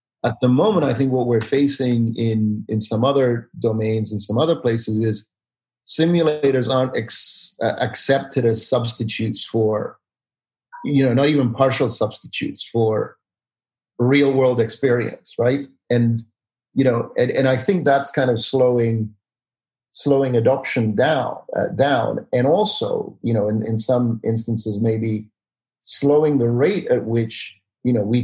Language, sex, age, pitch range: English, male, 40-59, 110-130 Hz